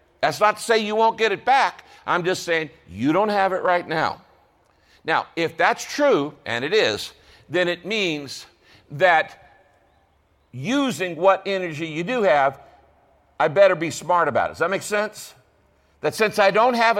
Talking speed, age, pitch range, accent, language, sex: 175 wpm, 60-79, 150-200 Hz, American, English, male